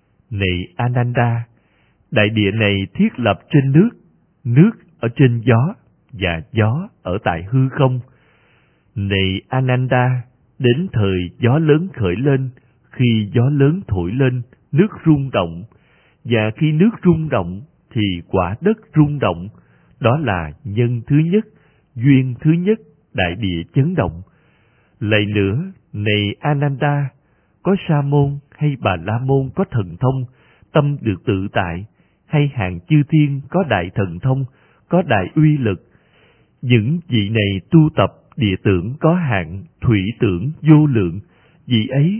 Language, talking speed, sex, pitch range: Vietnamese, 145 wpm, male, 105-145 Hz